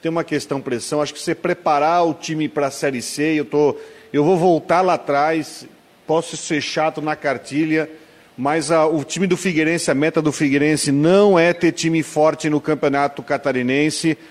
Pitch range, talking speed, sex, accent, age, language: 155-210 Hz, 180 wpm, male, Brazilian, 40-59, Portuguese